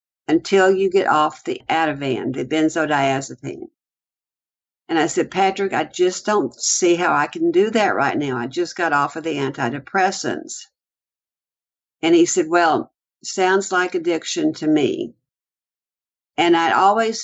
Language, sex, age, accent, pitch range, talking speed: English, female, 60-79, American, 160-210 Hz, 145 wpm